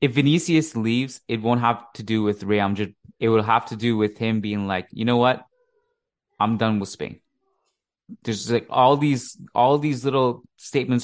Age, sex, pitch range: 20-39, male, 100-125 Hz